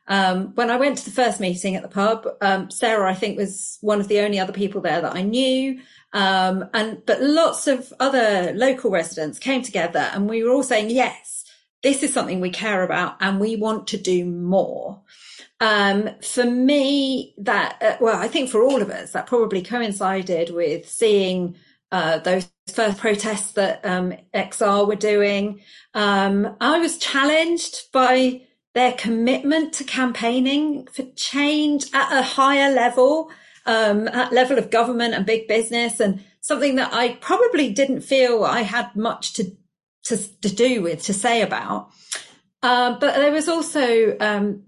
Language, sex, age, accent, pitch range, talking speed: English, female, 40-59, British, 200-260 Hz, 170 wpm